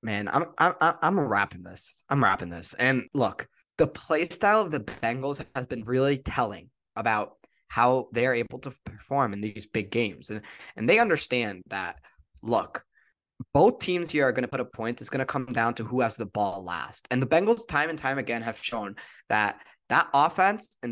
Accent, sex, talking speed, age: American, male, 200 wpm, 20-39